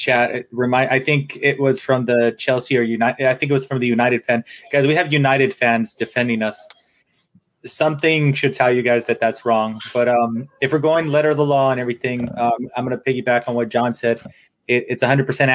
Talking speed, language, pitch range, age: 215 wpm, English, 120-135 Hz, 20-39